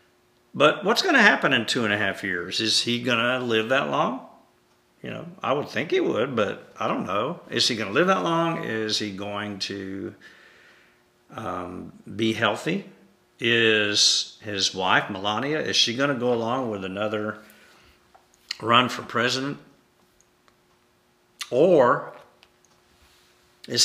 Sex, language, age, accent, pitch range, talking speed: male, English, 60-79, American, 95-125 Hz, 150 wpm